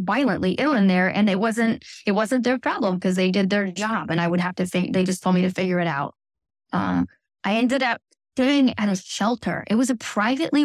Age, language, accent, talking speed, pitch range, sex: 10-29, English, American, 235 wpm, 185-240 Hz, female